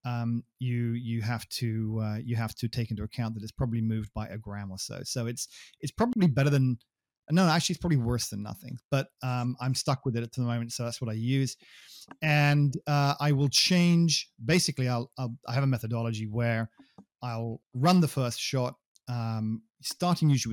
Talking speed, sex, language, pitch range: 200 wpm, male, English, 115-145 Hz